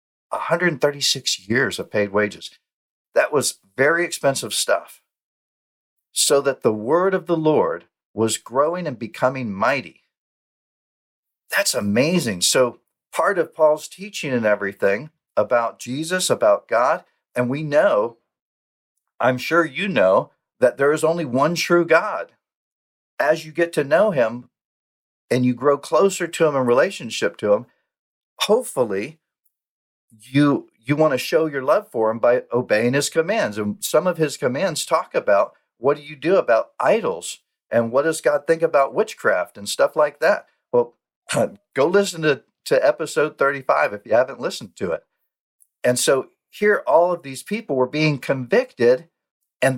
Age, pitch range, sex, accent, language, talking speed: 50-69, 120-170 Hz, male, American, English, 155 wpm